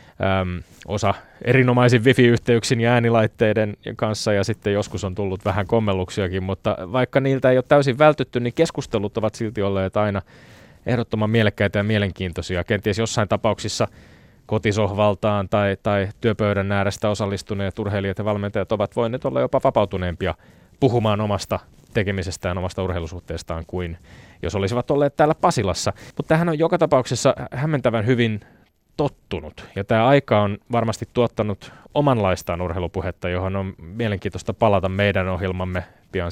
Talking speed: 140 wpm